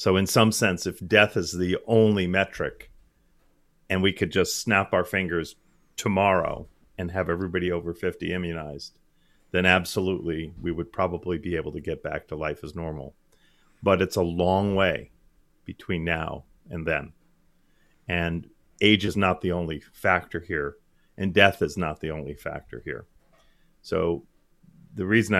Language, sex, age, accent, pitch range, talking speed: English, male, 40-59, American, 85-105 Hz, 155 wpm